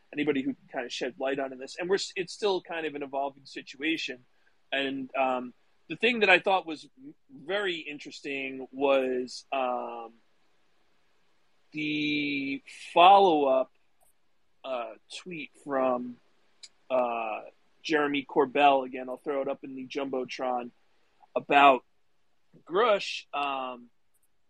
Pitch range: 135-175 Hz